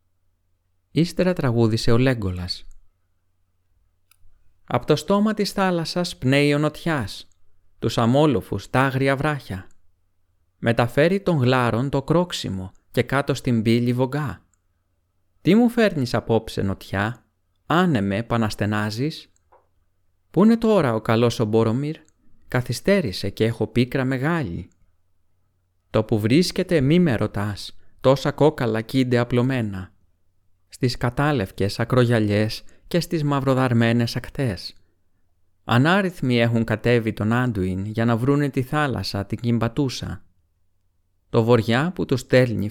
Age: 30-49